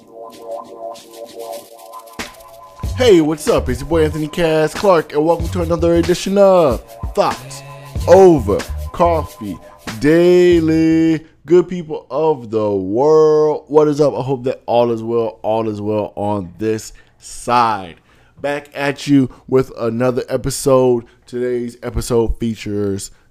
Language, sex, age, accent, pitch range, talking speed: English, male, 20-39, American, 95-135 Hz, 125 wpm